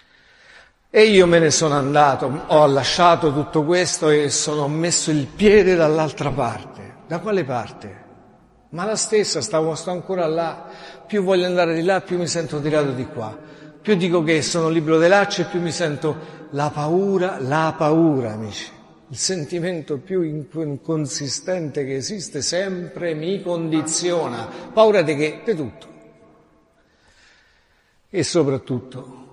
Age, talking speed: 50-69, 140 wpm